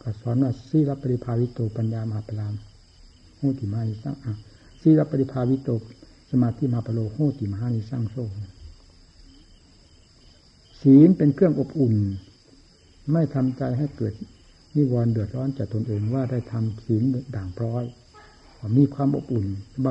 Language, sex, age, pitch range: Thai, male, 60-79, 100-140 Hz